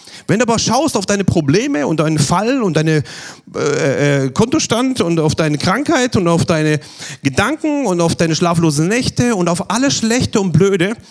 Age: 40-59